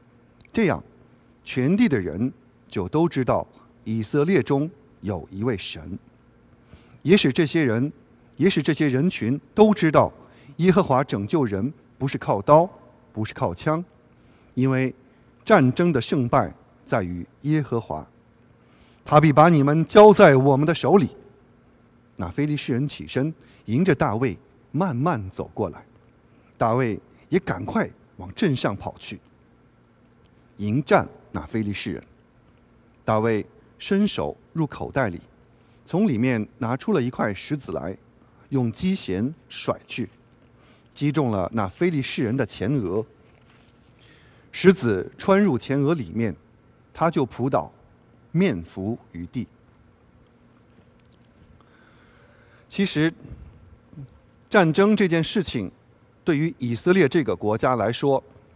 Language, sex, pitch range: English, male, 115-160 Hz